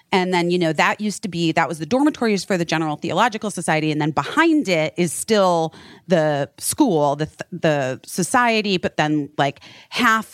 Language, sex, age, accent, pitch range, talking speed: English, female, 30-49, American, 160-225 Hz, 185 wpm